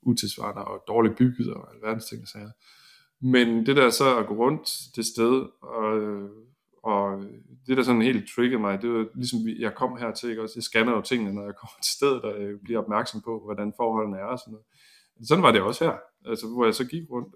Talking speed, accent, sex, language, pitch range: 220 wpm, native, male, Danish, 105-130 Hz